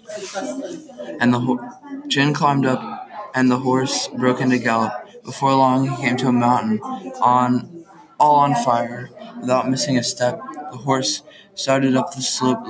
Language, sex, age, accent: English, male, 20-39, American